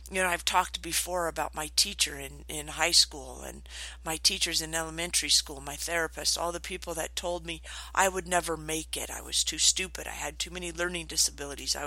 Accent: American